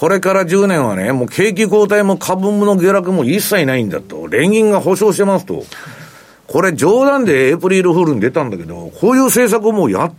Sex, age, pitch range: male, 50-69, 125-195 Hz